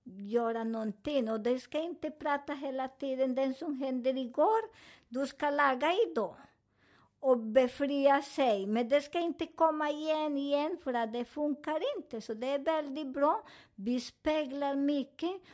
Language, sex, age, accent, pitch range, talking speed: Swedish, male, 50-69, American, 235-310 Hz, 150 wpm